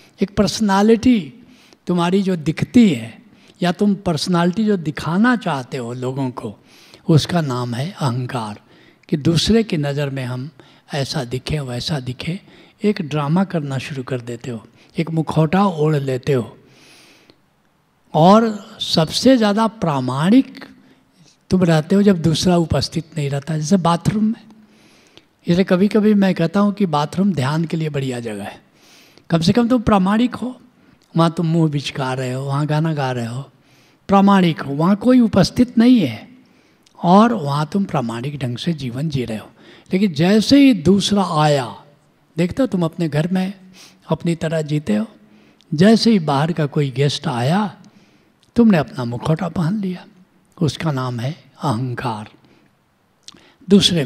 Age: 60-79